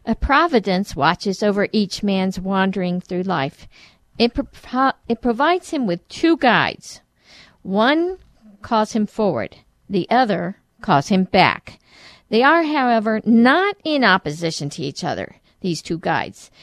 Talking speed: 135 wpm